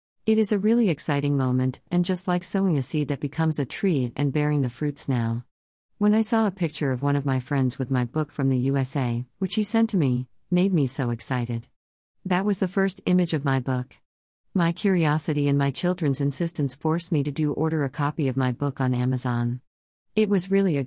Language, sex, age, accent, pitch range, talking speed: English, female, 50-69, American, 130-165 Hz, 220 wpm